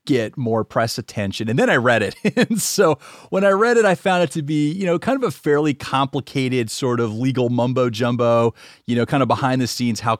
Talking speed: 235 wpm